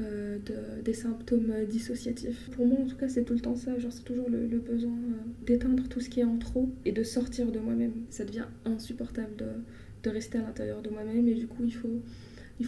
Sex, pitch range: female, 225-240 Hz